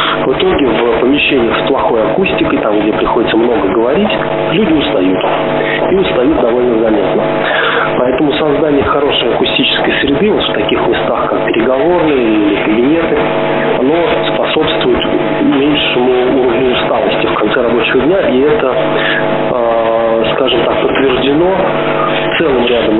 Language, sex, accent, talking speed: Russian, male, native, 125 wpm